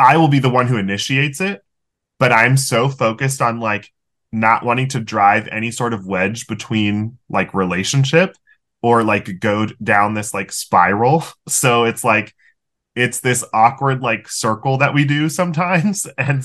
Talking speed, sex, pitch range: 165 wpm, male, 100-130 Hz